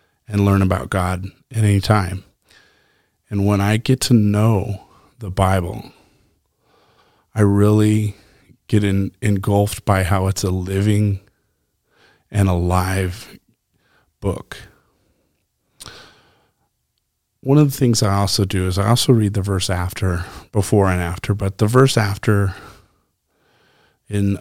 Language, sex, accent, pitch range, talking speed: English, male, American, 95-105 Hz, 120 wpm